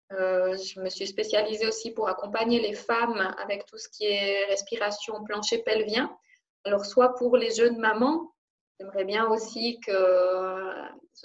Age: 20-39